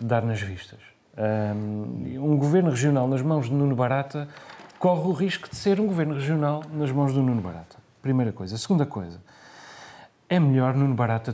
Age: 30-49